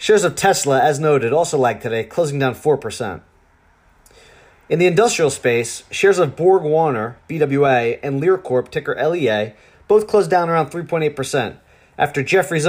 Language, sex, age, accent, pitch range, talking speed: English, male, 30-49, American, 125-170 Hz, 150 wpm